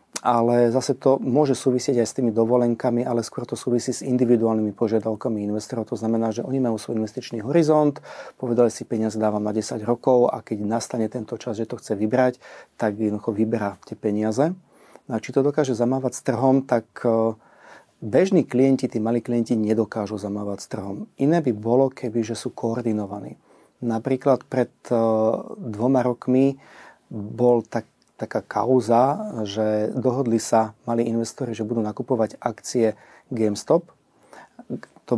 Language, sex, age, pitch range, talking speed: Slovak, male, 40-59, 110-130 Hz, 155 wpm